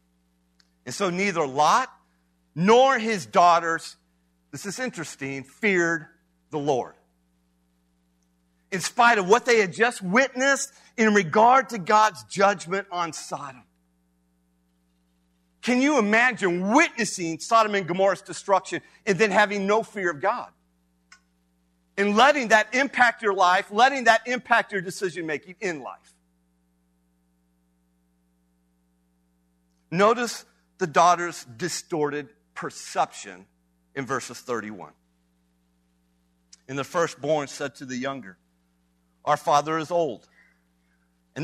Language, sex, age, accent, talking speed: English, male, 50-69, American, 110 wpm